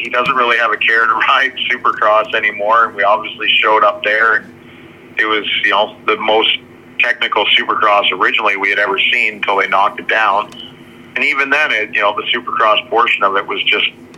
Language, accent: English, American